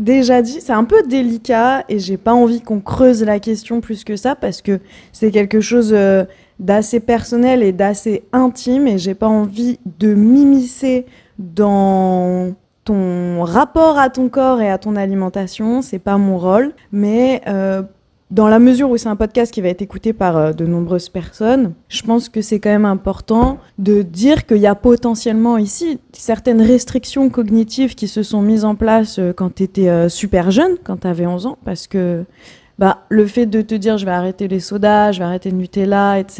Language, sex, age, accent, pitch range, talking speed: French, female, 20-39, French, 190-240 Hz, 195 wpm